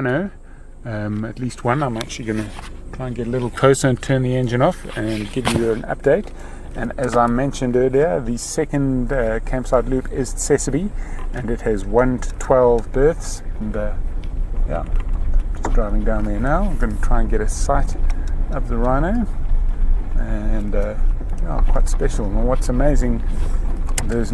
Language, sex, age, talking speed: English, male, 30-49, 180 wpm